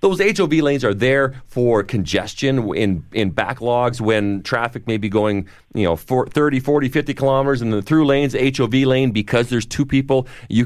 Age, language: 40-59, English